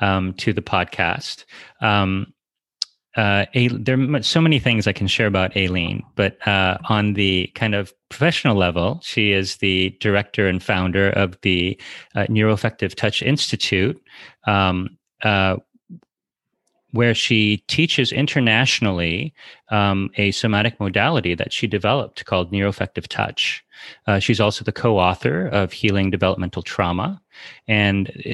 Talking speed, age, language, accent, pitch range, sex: 135 wpm, 30-49, English, American, 95-120 Hz, male